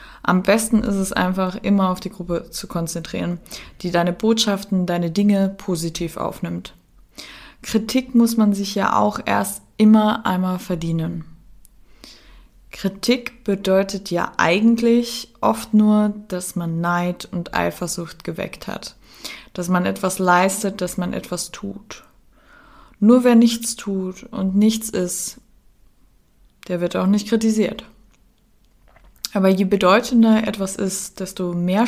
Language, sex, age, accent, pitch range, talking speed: German, female, 20-39, German, 180-210 Hz, 130 wpm